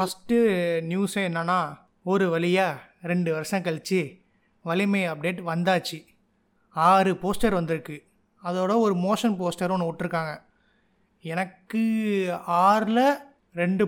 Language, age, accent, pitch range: Tamil, 30-49, native, 175-215 Hz